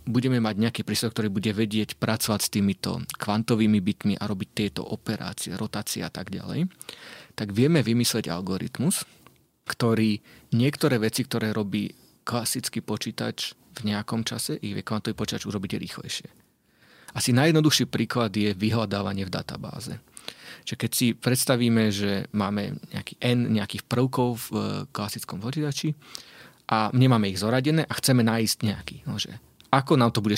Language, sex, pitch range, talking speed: Slovak, male, 105-125 Hz, 145 wpm